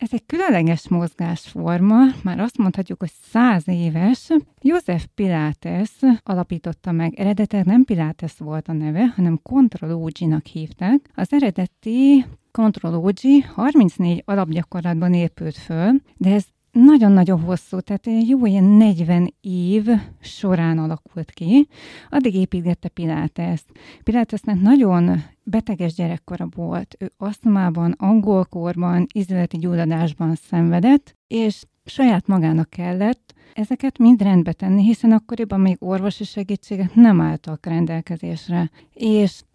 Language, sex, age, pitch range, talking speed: Hungarian, female, 30-49, 170-225 Hz, 110 wpm